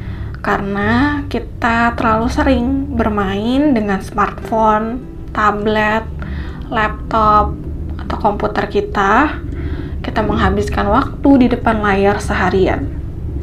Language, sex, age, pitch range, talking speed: English, female, 20-39, 200-245 Hz, 85 wpm